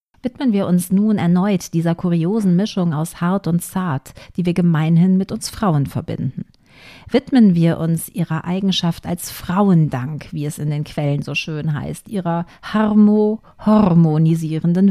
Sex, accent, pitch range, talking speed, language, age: female, German, 155-195 Hz, 145 wpm, German, 50-69